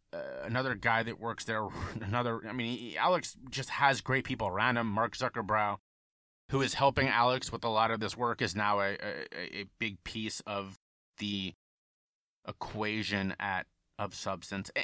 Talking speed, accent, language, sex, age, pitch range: 175 wpm, American, English, male, 30-49, 100-130 Hz